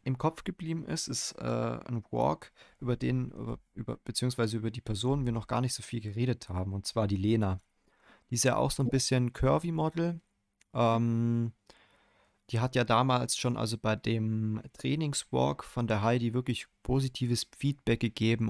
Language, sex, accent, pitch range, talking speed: German, male, German, 105-120 Hz, 180 wpm